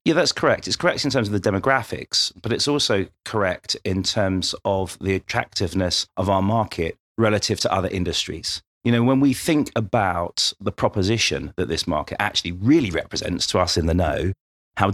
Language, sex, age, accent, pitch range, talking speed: English, male, 30-49, British, 90-115 Hz, 185 wpm